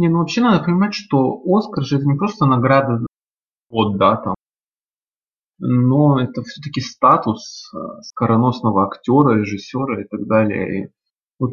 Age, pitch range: 20-39, 115-155 Hz